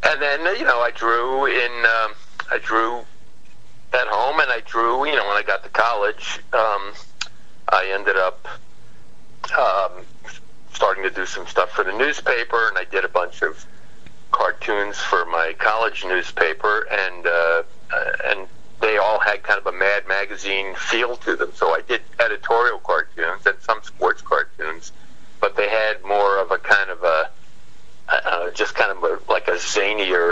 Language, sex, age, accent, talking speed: English, male, 50-69, American, 170 wpm